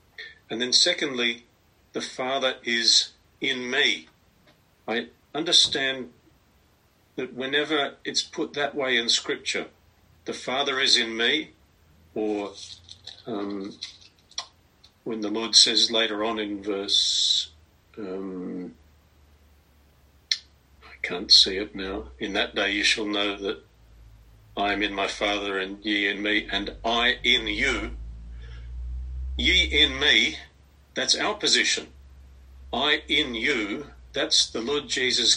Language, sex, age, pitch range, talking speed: English, male, 50-69, 90-145 Hz, 120 wpm